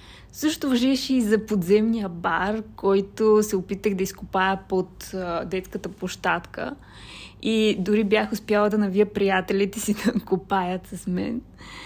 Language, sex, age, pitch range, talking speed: Bulgarian, female, 20-39, 195-255 Hz, 130 wpm